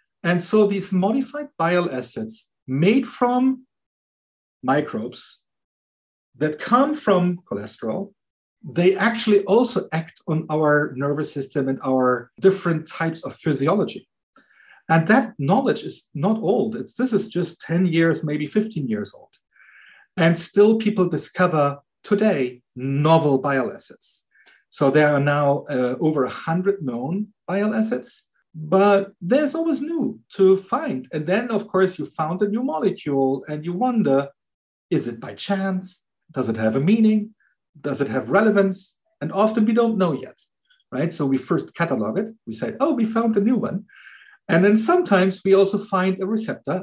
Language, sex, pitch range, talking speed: English, male, 145-215 Hz, 150 wpm